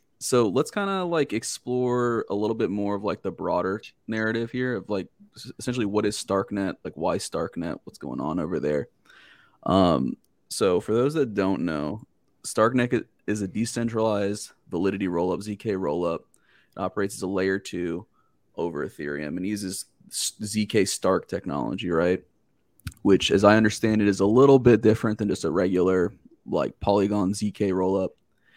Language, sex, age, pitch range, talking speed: English, male, 20-39, 100-125 Hz, 160 wpm